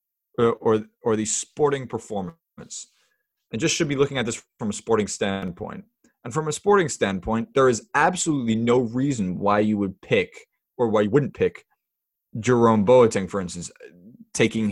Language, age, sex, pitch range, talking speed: English, 20-39, male, 105-130 Hz, 165 wpm